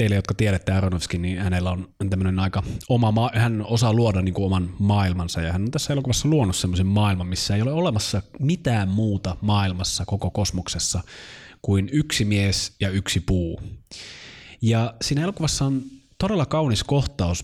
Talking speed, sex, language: 160 wpm, male, Finnish